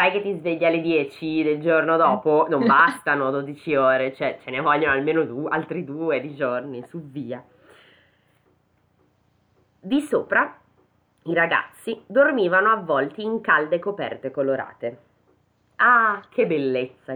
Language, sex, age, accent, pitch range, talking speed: Italian, female, 20-39, native, 140-225 Hz, 130 wpm